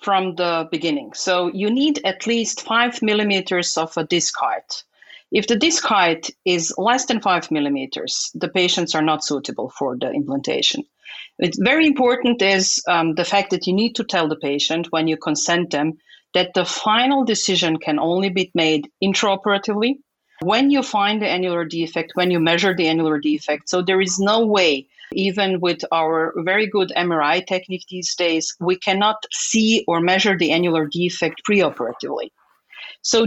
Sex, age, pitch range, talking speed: female, 40-59, 160-200 Hz, 170 wpm